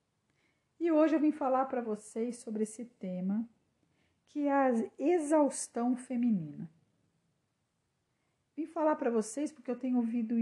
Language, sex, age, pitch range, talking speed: Portuguese, female, 50-69, 195-250 Hz, 130 wpm